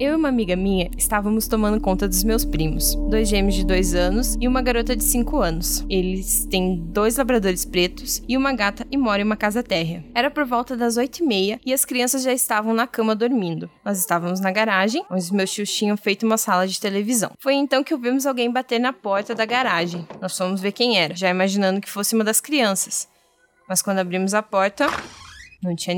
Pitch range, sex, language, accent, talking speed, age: 185-250 Hz, female, Portuguese, Brazilian, 215 wpm, 10-29